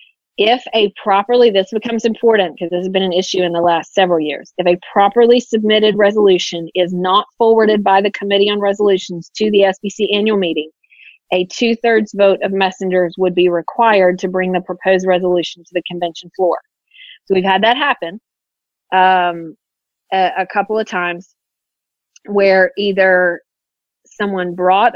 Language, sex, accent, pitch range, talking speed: English, female, American, 180-210 Hz, 160 wpm